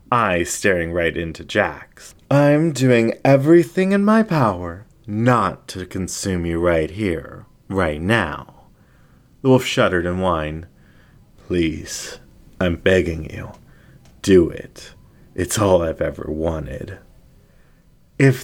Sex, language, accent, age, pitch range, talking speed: male, English, American, 30-49, 85-125 Hz, 115 wpm